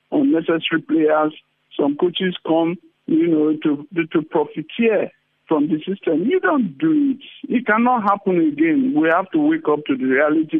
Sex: male